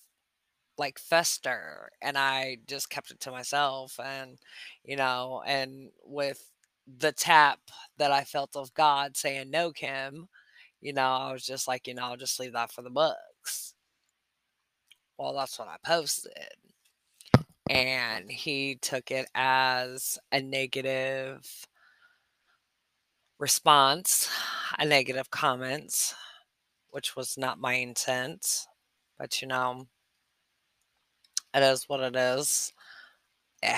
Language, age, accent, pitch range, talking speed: English, 20-39, American, 130-140 Hz, 125 wpm